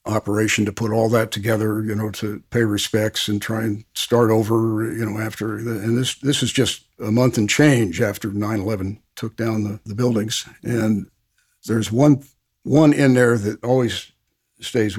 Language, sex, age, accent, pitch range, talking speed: English, male, 60-79, American, 105-125 Hz, 175 wpm